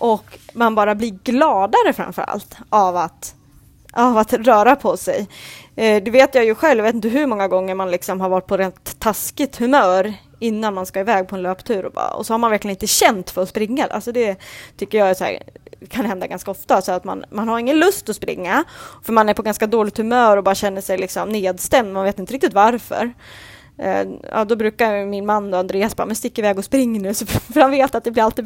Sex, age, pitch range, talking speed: female, 20-39, 195-235 Hz, 230 wpm